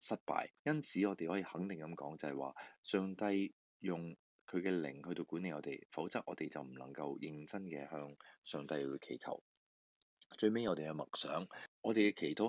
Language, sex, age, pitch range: Chinese, male, 20-39, 75-100 Hz